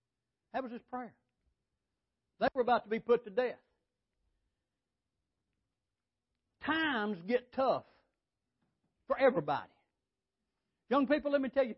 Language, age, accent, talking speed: English, 60-79, American, 115 wpm